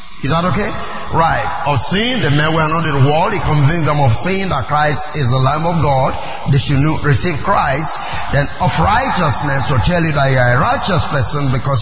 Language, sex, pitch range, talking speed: English, male, 140-205 Hz, 215 wpm